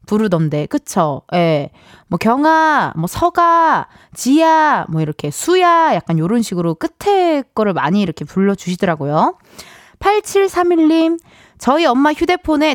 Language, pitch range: Korean, 180-290 Hz